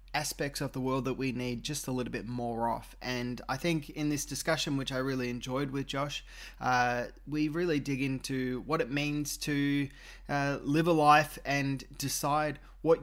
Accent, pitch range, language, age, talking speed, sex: Australian, 125-150 Hz, English, 20-39, 190 wpm, male